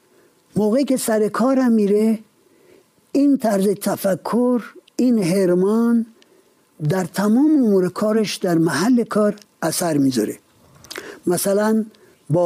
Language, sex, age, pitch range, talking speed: Persian, male, 50-69, 175-230 Hz, 100 wpm